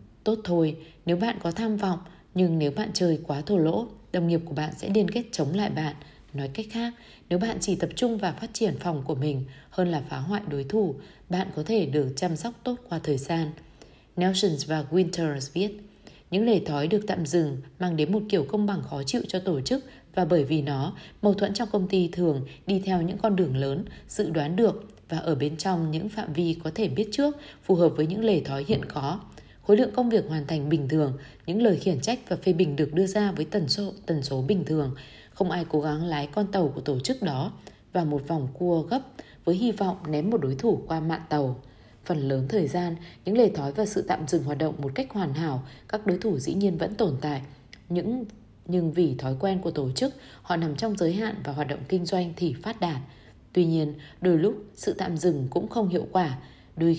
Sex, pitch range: female, 150-205 Hz